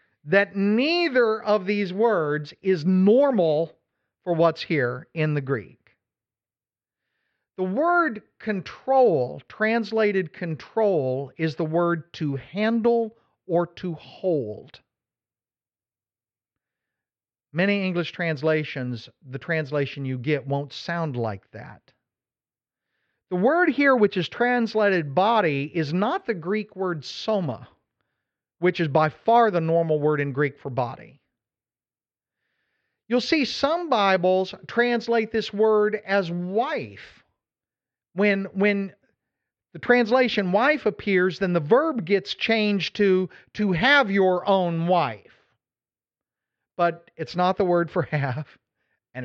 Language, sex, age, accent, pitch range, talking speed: English, male, 50-69, American, 150-215 Hz, 115 wpm